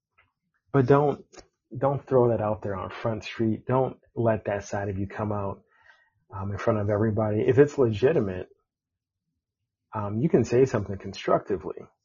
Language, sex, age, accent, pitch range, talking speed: English, male, 30-49, American, 100-120 Hz, 160 wpm